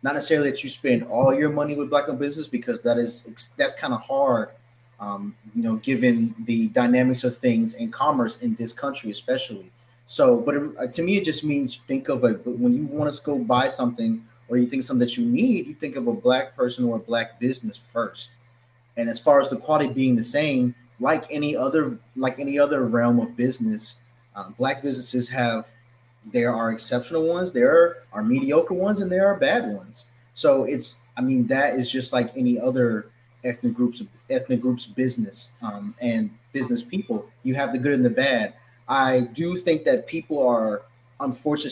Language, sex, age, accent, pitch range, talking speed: English, male, 20-39, American, 120-155 Hz, 195 wpm